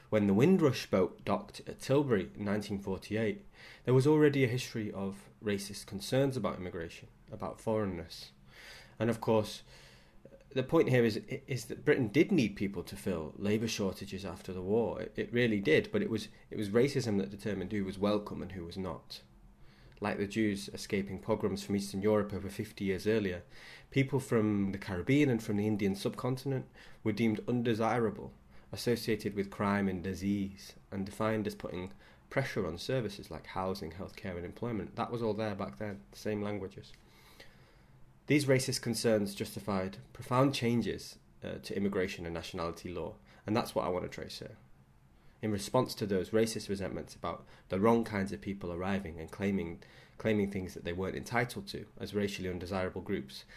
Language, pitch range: English, 95-110 Hz